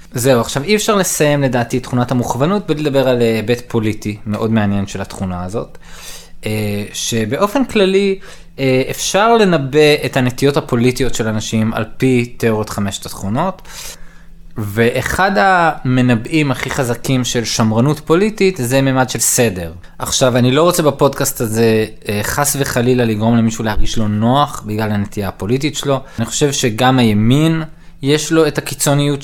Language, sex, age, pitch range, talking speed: Hebrew, male, 20-39, 110-155 Hz, 145 wpm